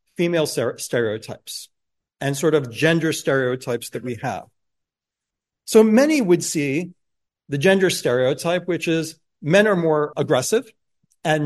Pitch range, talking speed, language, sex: 140-180 Hz, 125 wpm, English, male